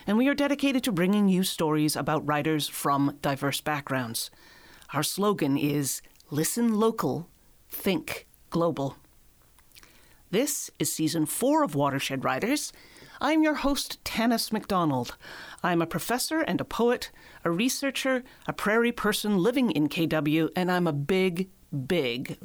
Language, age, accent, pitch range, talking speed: English, 40-59, American, 155-220 Hz, 135 wpm